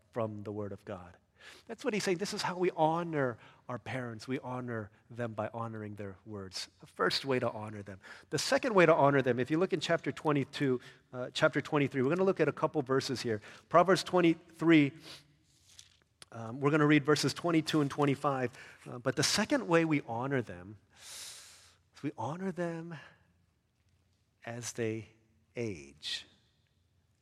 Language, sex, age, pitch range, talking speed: English, male, 40-59, 100-130 Hz, 175 wpm